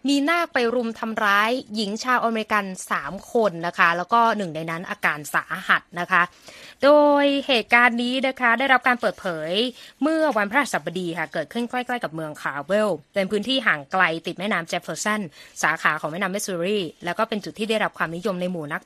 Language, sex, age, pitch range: Thai, female, 20-39, 190-265 Hz